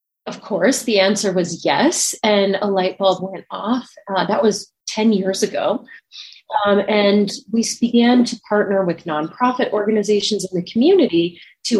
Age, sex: 30-49, female